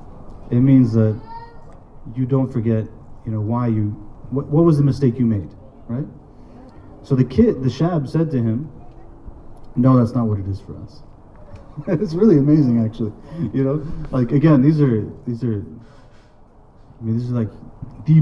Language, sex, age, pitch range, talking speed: English, male, 30-49, 105-130 Hz, 170 wpm